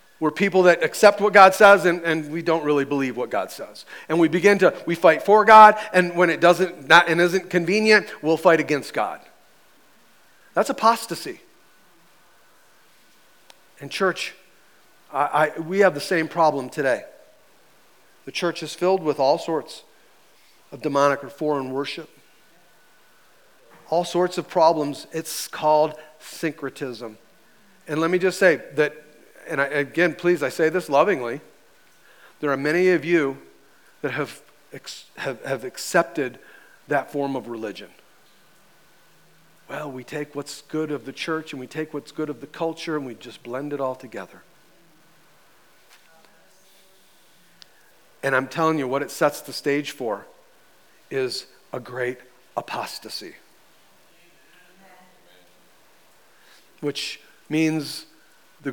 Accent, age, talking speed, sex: American, 40-59, 135 wpm, male